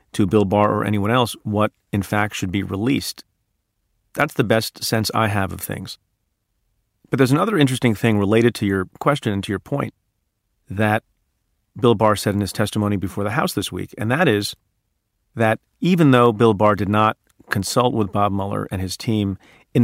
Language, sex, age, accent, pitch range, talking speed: English, male, 40-59, American, 100-115 Hz, 190 wpm